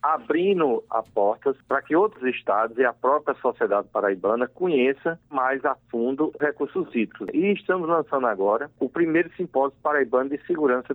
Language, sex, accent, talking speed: Portuguese, male, Brazilian, 155 wpm